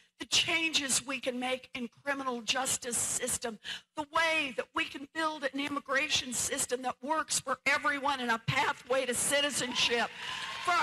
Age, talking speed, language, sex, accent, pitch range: 60-79, 155 wpm, English, female, American, 220-290 Hz